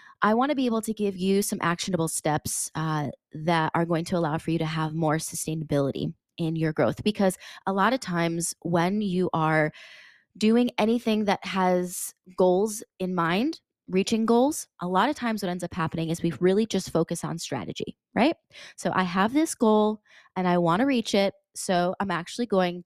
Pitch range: 160-205 Hz